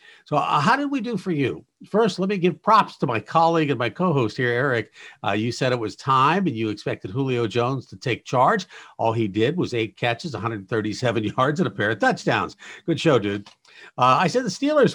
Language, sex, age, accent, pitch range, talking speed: English, male, 50-69, American, 110-150 Hz, 225 wpm